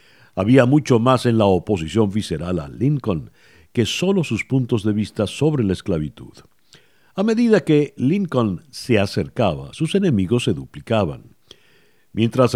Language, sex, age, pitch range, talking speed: Spanish, male, 60-79, 105-135 Hz, 140 wpm